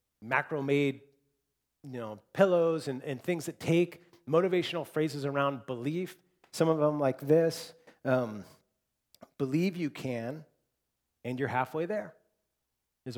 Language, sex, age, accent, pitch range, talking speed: English, male, 40-59, American, 115-155 Hz, 125 wpm